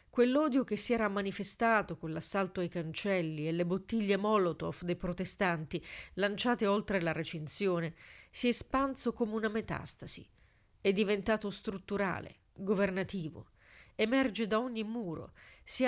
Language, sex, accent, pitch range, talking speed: Italian, female, native, 180-220 Hz, 130 wpm